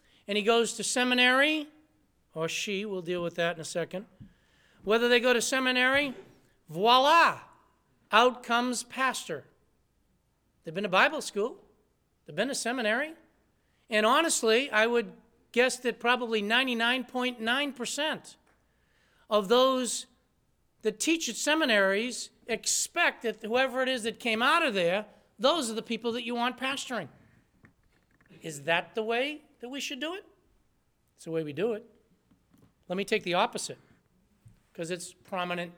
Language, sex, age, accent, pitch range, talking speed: English, male, 60-79, American, 190-255 Hz, 145 wpm